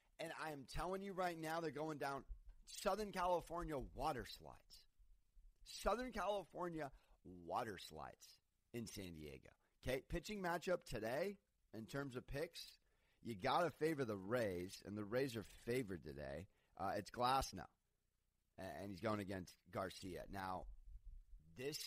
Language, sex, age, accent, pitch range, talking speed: English, male, 30-49, American, 100-155 Hz, 140 wpm